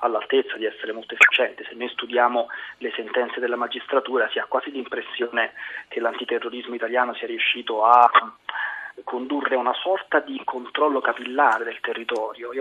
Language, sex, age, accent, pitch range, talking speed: Italian, male, 20-39, native, 120-145 Hz, 150 wpm